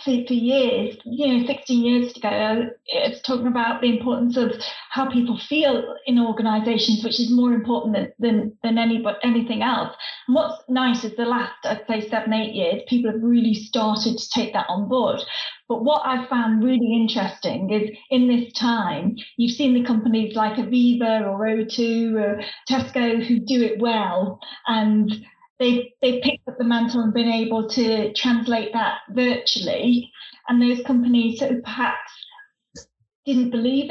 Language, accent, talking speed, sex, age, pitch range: English, British, 170 wpm, female, 30-49, 225-250 Hz